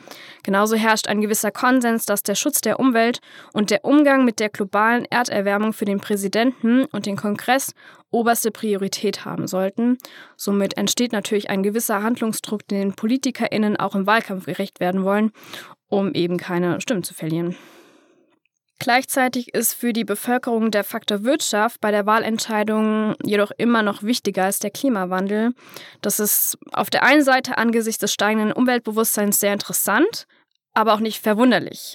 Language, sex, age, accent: German, female, 10-29, German